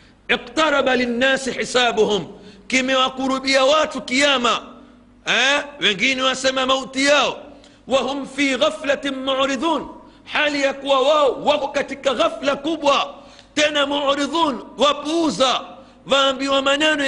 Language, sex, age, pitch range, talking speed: Swahili, male, 50-69, 220-275 Hz, 100 wpm